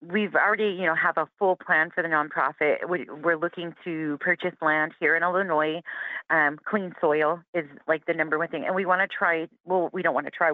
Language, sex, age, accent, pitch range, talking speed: English, female, 30-49, American, 155-185 Hz, 215 wpm